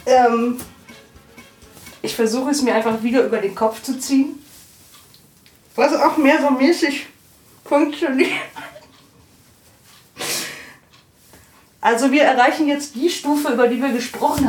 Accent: German